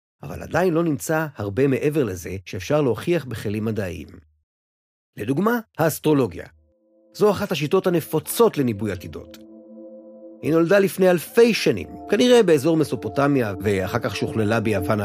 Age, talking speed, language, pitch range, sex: 30-49, 125 wpm, Hebrew, 105-175 Hz, male